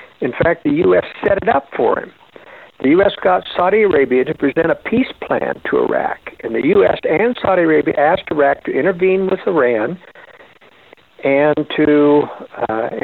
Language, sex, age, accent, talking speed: English, male, 60-79, American, 165 wpm